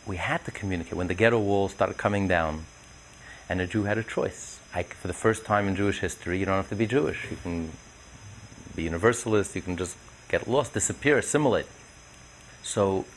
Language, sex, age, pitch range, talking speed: English, male, 40-59, 95-125 Hz, 190 wpm